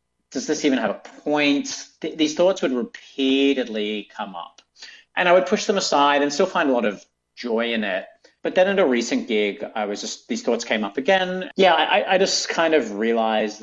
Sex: male